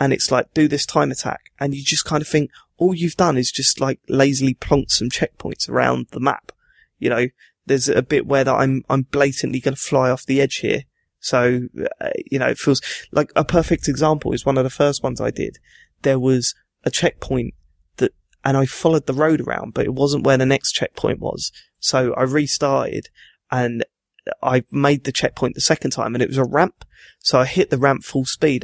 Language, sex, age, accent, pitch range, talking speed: English, male, 20-39, British, 130-155 Hz, 215 wpm